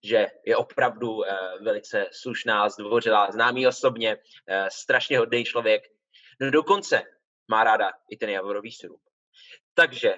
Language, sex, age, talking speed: Czech, male, 20-39, 130 wpm